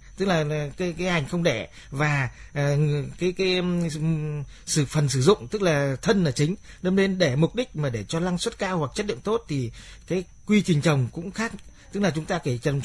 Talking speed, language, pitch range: 230 wpm, Vietnamese, 140-180 Hz